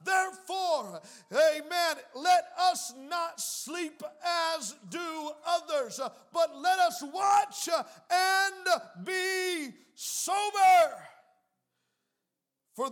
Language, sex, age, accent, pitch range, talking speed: English, male, 50-69, American, 270-355 Hz, 80 wpm